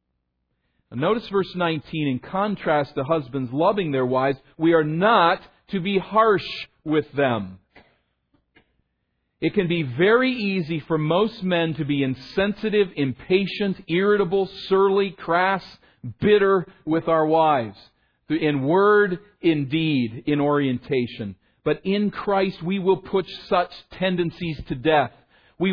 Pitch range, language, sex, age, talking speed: 105-175 Hz, English, male, 40-59, 125 wpm